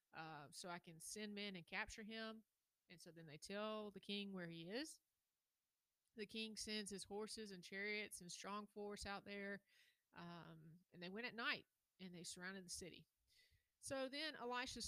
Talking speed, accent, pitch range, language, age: 180 wpm, American, 180-220 Hz, English, 30-49